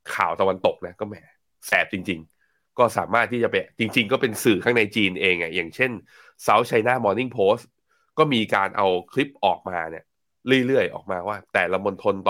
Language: Thai